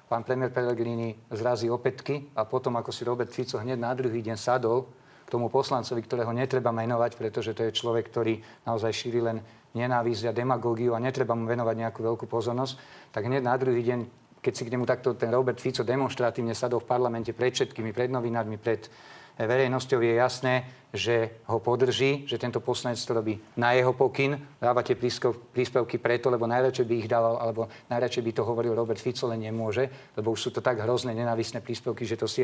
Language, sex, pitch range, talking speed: Slovak, male, 115-130 Hz, 190 wpm